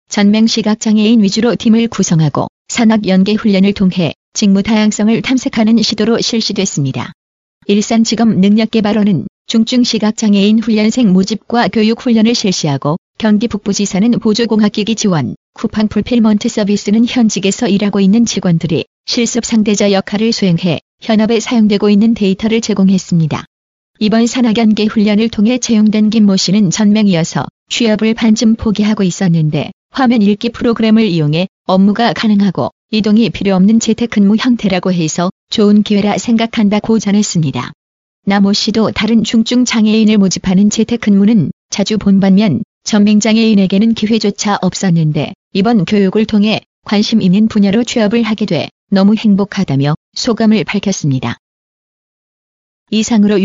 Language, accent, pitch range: Korean, native, 195-225 Hz